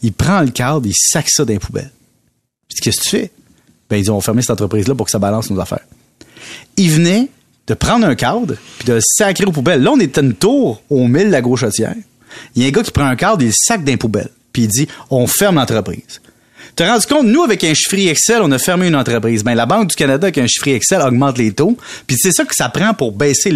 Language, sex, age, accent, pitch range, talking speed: French, male, 30-49, Canadian, 120-170 Hz, 260 wpm